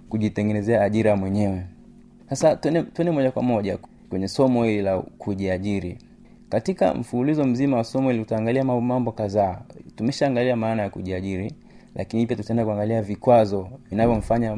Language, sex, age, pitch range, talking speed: Swahili, male, 30-49, 100-125 Hz, 140 wpm